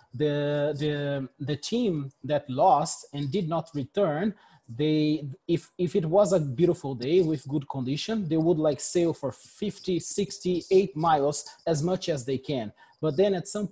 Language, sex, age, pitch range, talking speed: English, male, 30-49, 140-180 Hz, 170 wpm